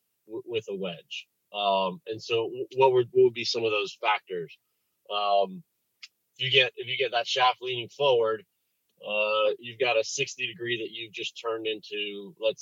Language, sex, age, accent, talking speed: English, male, 30-49, American, 180 wpm